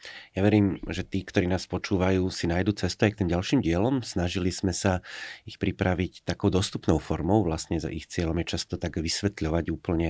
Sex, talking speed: male, 190 wpm